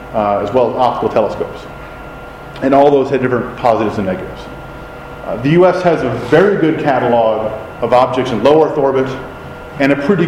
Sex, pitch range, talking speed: male, 120-150 Hz, 180 wpm